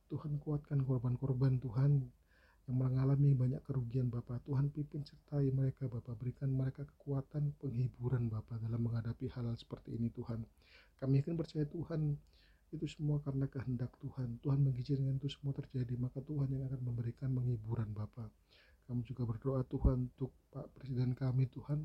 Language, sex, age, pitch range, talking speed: Indonesian, male, 40-59, 120-140 Hz, 150 wpm